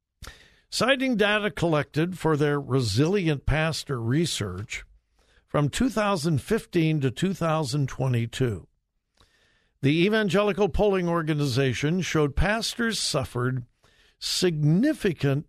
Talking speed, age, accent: 80 wpm, 60-79, American